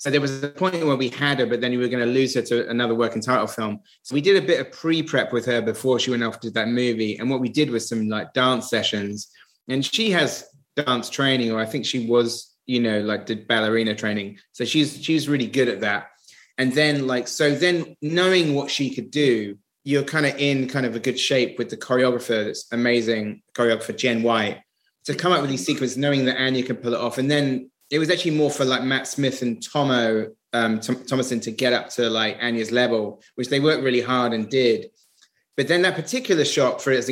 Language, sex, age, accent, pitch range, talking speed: English, male, 20-39, British, 115-140 Hz, 240 wpm